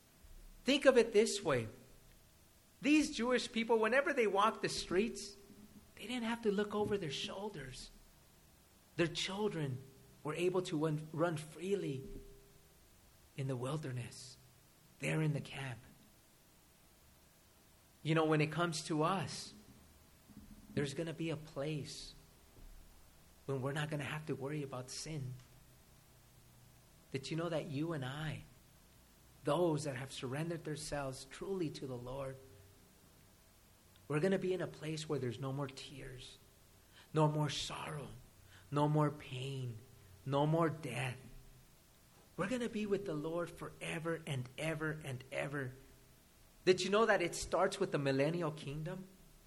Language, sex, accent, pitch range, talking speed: English, male, American, 130-175 Hz, 140 wpm